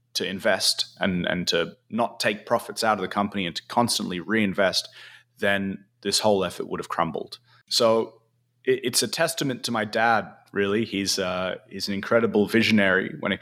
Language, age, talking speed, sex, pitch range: English, 20-39, 180 wpm, male, 95-120 Hz